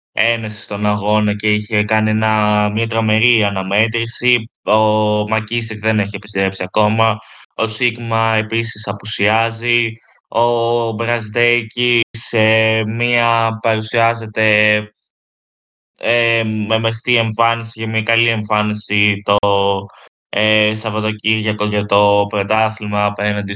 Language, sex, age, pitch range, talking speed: Greek, male, 20-39, 105-115 Hz, 100 wpm